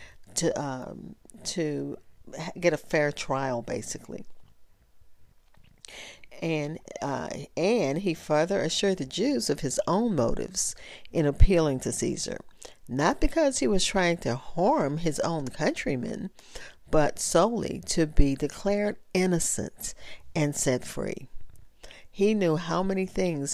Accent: American